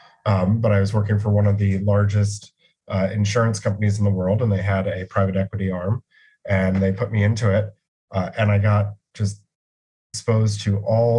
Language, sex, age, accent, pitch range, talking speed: English, male, 30-49, American, 95-105 Hz, 200 wpm